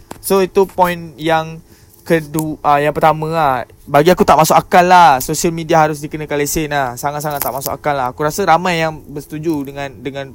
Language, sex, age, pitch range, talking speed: Malay, male, 20-39, 130-180 Hz, 185 wpm